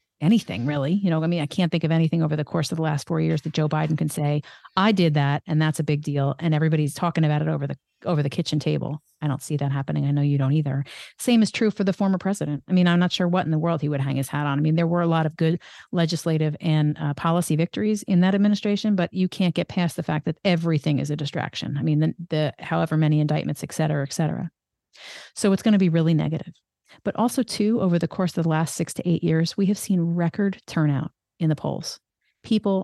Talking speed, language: 260 wpm, English